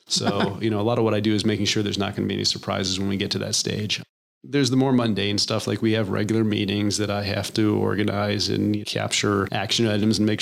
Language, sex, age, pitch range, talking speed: English, male, 30-49, 105-115 Hz, 265 wpm